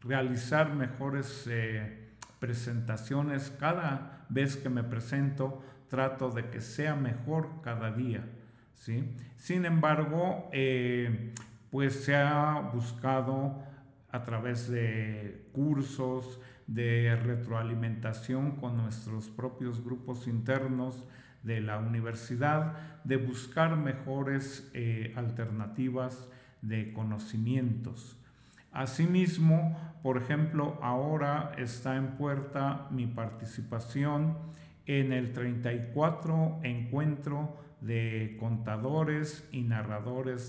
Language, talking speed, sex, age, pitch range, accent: Spanish, 90 wpm, male, 50-69, 120-145 Hz, Mexican